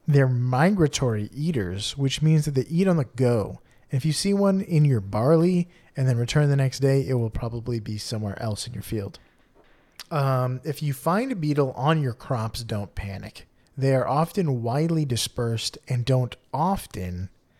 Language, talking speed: English, 175 wpm